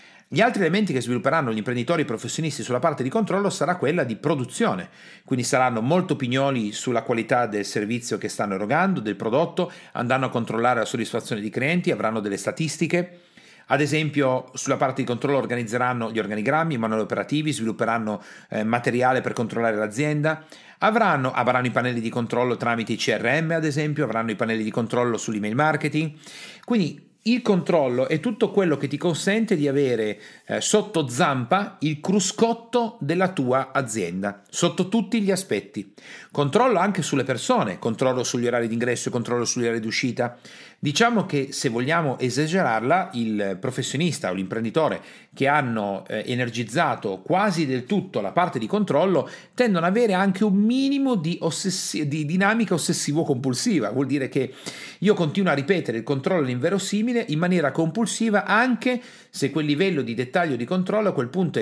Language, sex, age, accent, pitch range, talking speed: Italian, male, 40-59, native, 120-180 Hz, 160 wpm